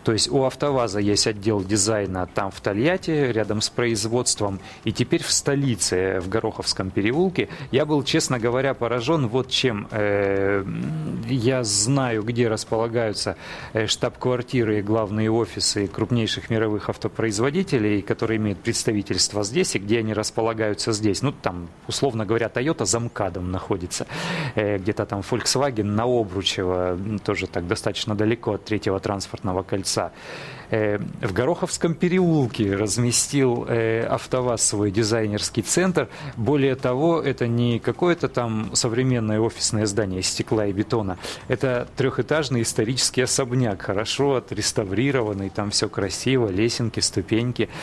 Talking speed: 125 wpm